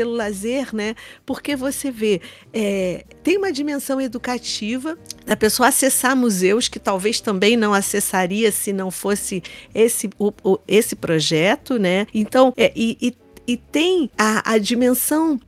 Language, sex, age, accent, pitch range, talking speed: Portuguese, female, 50-69, Brazilian, 210-295 Hz, 145 wpm